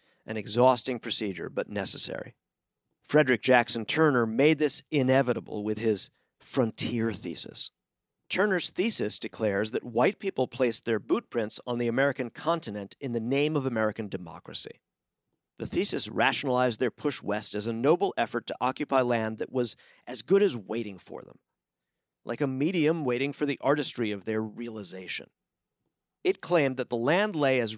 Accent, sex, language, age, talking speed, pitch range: American, male, English, 50-69, 155 wpm, 115-150 Hz